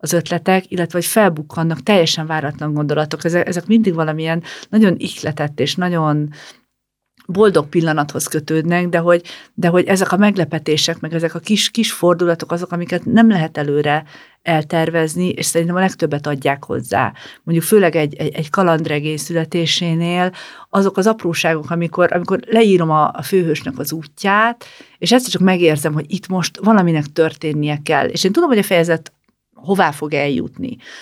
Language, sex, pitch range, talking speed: Hungarian, female, 155-185 Hz, 155 wpm